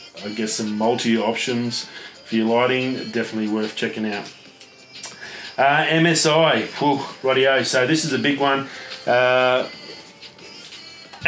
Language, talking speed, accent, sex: English, 115 wpm, Australian, male